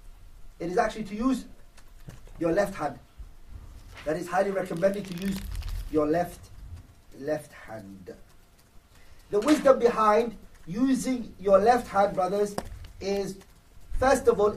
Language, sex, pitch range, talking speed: English, male, 170-225 Hz, 125 wpm